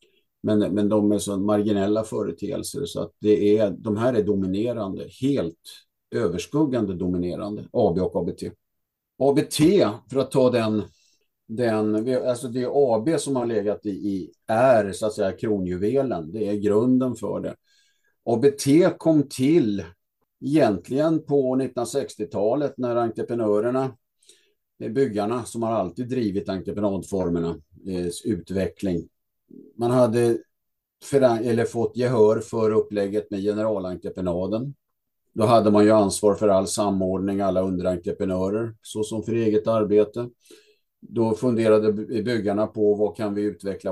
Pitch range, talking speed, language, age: 100-120 Hz, 130 wpm, Swedish, 50-69